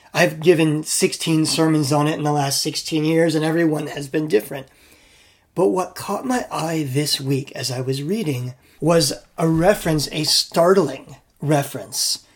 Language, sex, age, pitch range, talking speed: English, male, 30-49, 140-160 Hz, 160 wpm